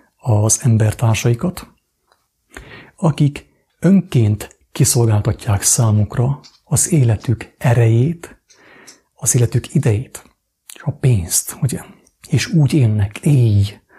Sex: male